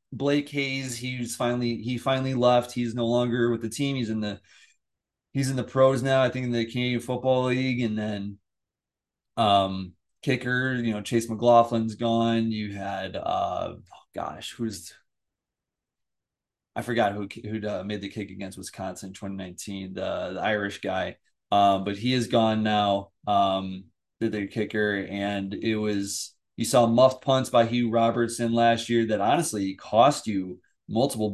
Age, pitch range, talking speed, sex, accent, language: 30-49, 100-120 Hz, 170 wpm, male, American, English